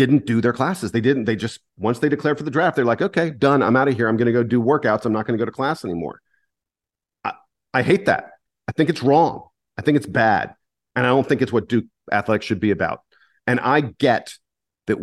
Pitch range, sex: 105-140 Hz, male